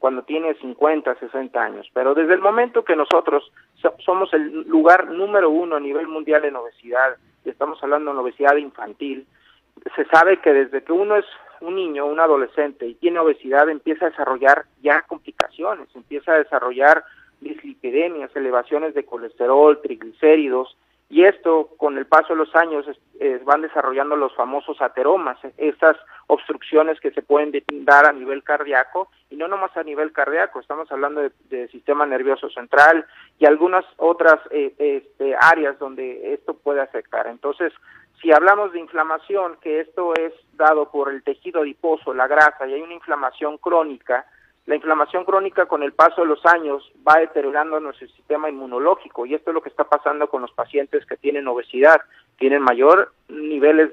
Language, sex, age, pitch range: Spanish, male, 50-69, 145-175 Hz